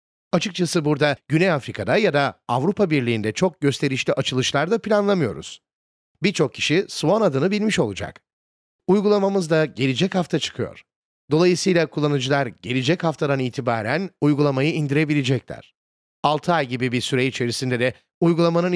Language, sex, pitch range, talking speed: Turkish, male, 130-185 Hz, 125 wpm